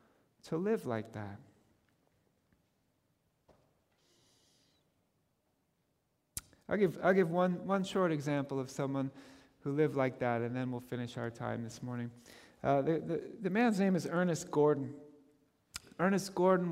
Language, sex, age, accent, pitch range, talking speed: English, male, 40-59, American, 135-185 Hz, 130 wpm